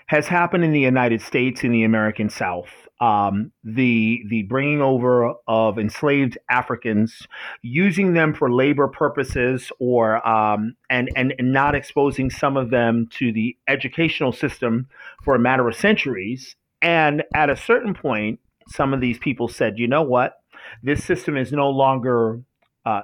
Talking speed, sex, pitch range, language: 160 wpm, male, 120-150 Hz, English